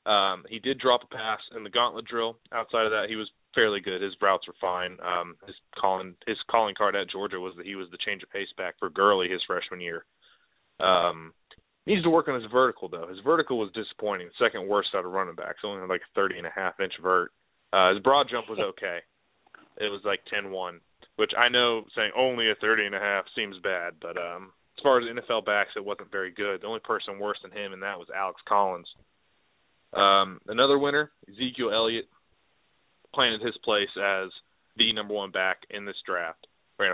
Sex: male